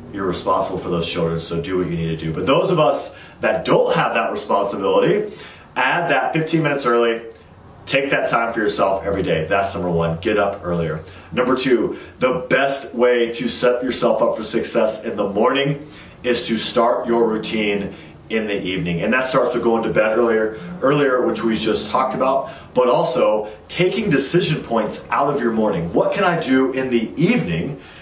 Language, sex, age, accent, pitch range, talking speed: English, male, 30-49, American, 95-125 Hz, 195 wpm